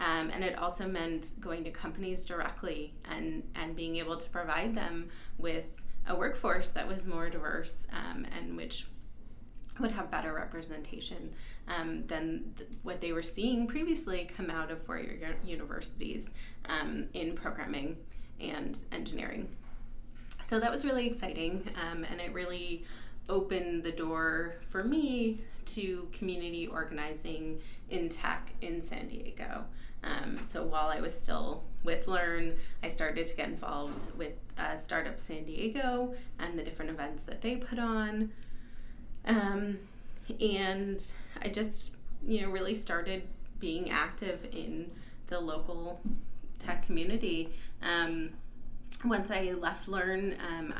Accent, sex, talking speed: American, female, 135 wpm